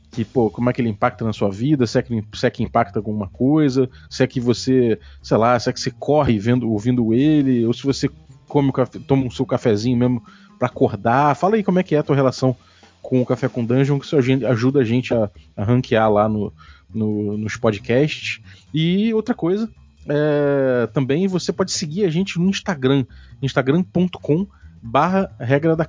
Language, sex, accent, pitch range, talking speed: Portuguese, male, Brazilian, 120-155 Hz, 200 wpm